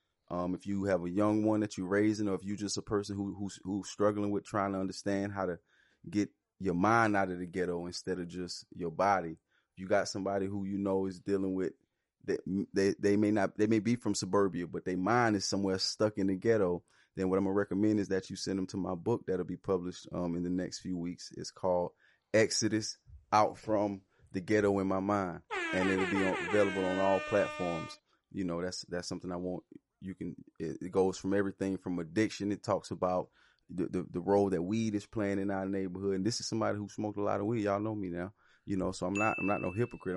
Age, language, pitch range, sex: 30-49, English, 90-100 Hz, male